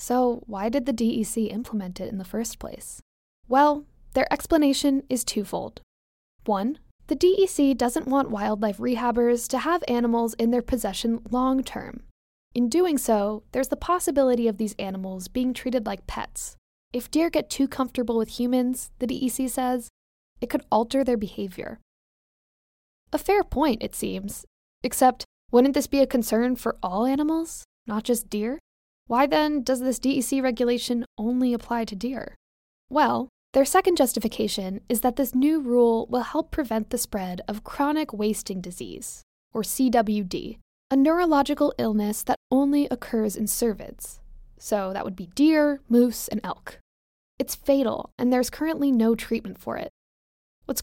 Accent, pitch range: American, 220-275 Hz